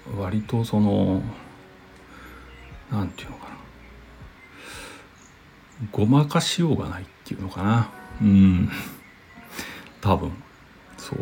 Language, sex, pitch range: Japanese, male, 95-120 Hz